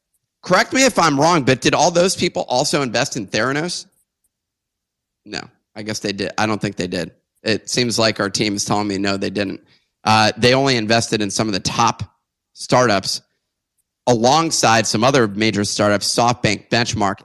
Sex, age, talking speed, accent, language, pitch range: male, 30-49, 180 wpm, American, English, 110-145 Hz